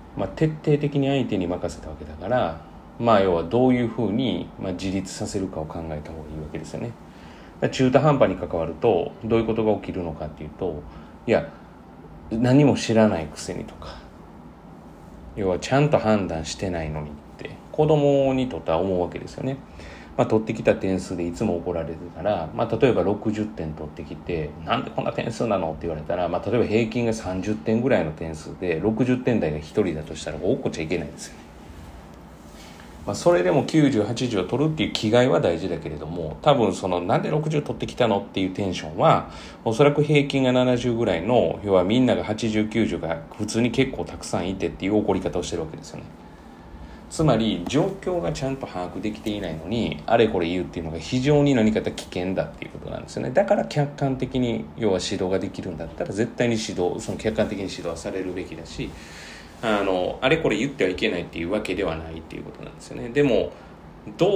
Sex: male